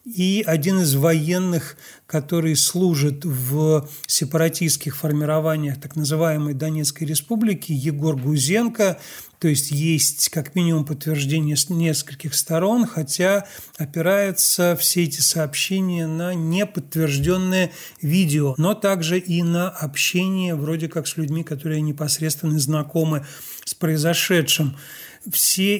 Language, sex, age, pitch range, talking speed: Russian, male, 40-59, 150-175 Hz, 110 wpm